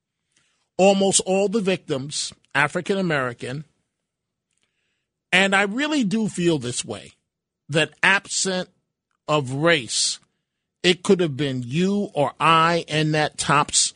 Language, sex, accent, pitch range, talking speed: English, male, American, 145-180 Hz, 110 wpm